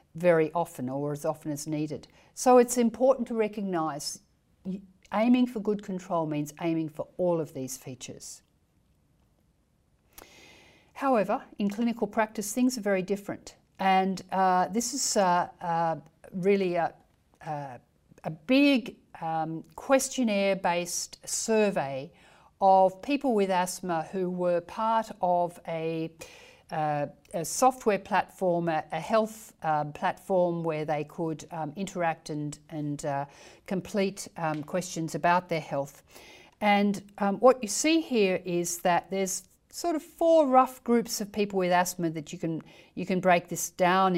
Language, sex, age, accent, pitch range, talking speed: English, female, 50-69, Australian, 165-220 Hz, 140 wpm